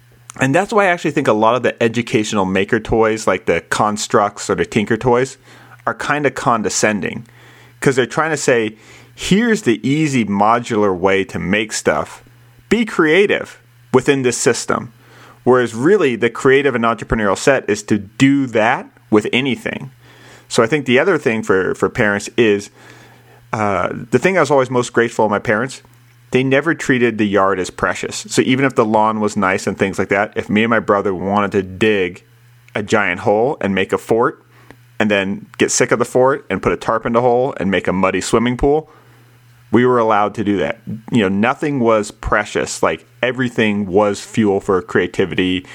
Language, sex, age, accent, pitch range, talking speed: English, male, 30-49, American, 105-125 Hz, 190 wpm